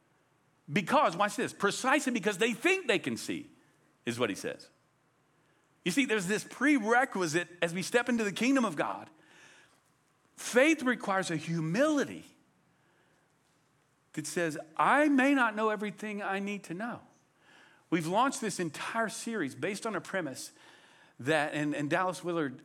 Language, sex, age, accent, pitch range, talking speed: English, male, 50-69, American, 155-225 Hz, 150 wpm